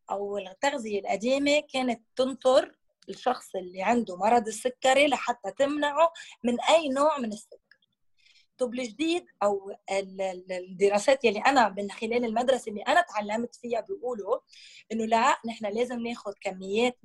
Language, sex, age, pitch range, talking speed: Arabic, female, 20-39, 205-275 Hz, 125 wpm